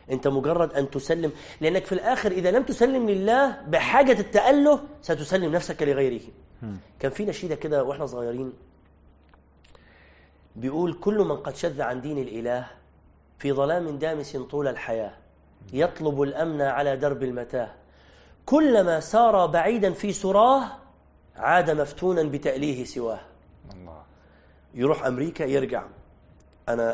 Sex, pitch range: male, 120-170 Hz